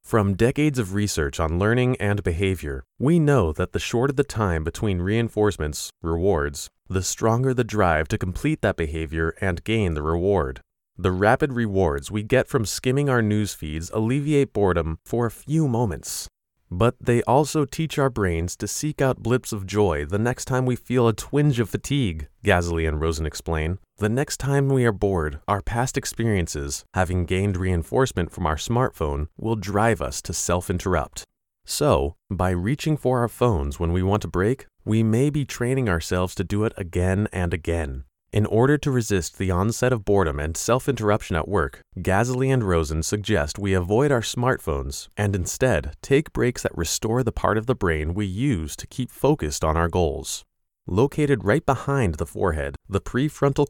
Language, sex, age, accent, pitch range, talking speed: English, male, 30-49, American, 85-125 Hz, 180 wpm